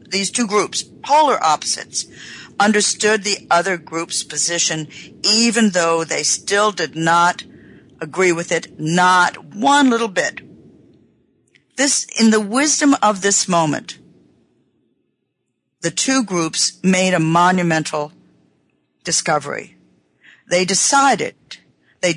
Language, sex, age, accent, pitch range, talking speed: English, female, 50-69, American, 165-215 Hz, 110 wpm